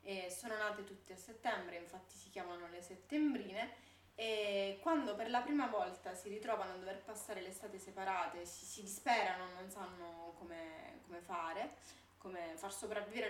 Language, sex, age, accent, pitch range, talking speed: Italian, female, 20-39, native, 185-230 Hz, 160 wpm